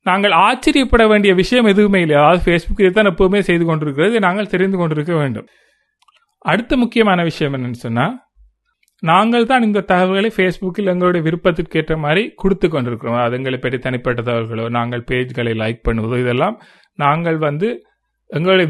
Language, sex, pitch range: Tamil, male, 155-215 Hz